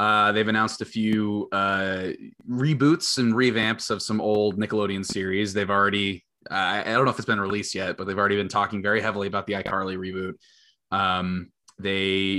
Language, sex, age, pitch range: English, male, 20-39, 95-125 Hz